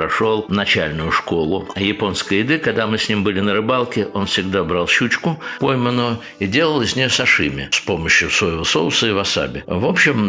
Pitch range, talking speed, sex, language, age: 95-120 Hz, 175 wpm, male, Russian, 60-79